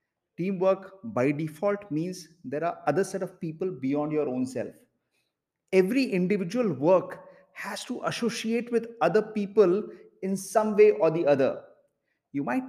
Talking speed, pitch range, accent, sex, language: 145 wpm, 185-245 Hz, Indian, male, English